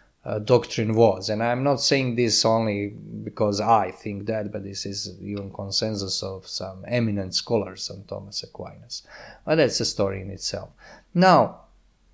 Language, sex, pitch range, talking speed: English, male, 105-145 Hz, 160 wpm